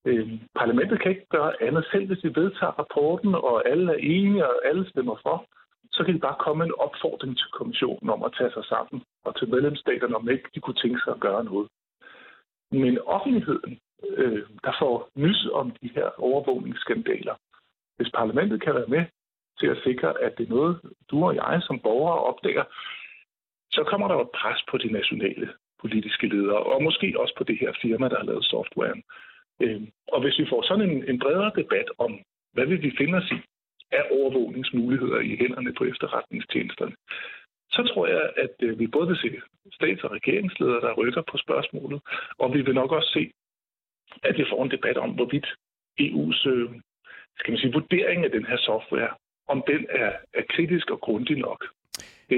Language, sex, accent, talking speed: Danish, male, native, 185 wpm